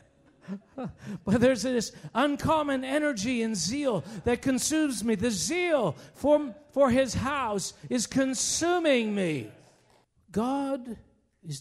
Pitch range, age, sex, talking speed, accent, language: 125-200 Hz, 50-69, male, 110 wpm, American, English